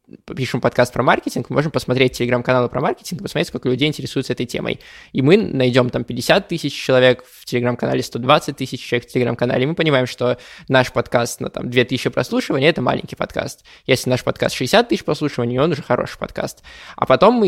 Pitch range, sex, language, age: 125-140 Hz, male, Russian, 20-39